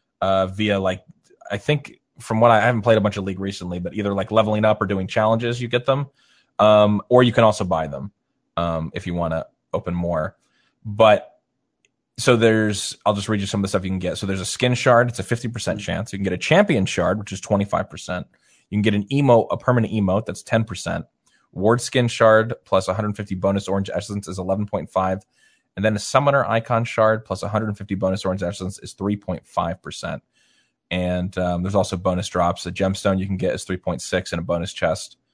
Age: 20-39